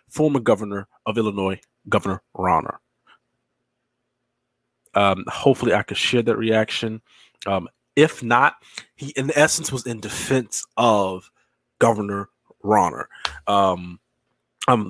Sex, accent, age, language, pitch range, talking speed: male, American, 30-49, English, 100-130 Hz, 110 wpm